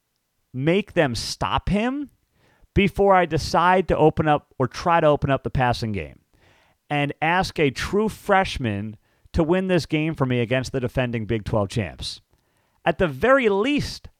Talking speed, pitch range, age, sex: 165 wpm, 125-175 Hz, 40-59, male